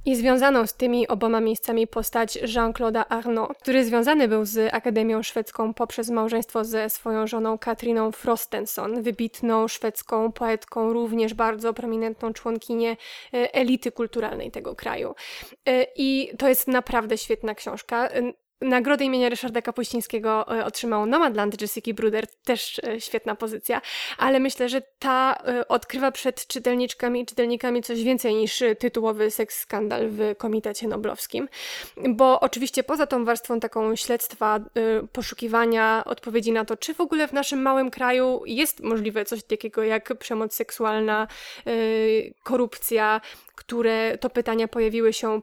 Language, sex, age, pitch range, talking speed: Polish, female, 20-39, 225-250 Hz, 130 wpm